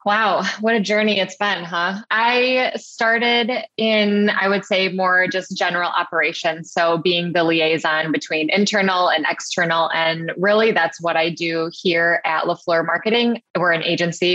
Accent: American